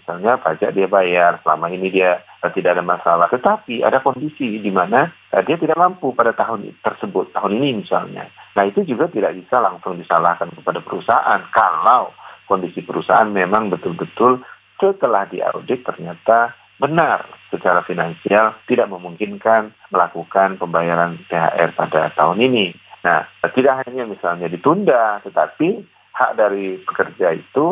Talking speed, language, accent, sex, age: 135 wpm, Indonesian, native, male, 40-59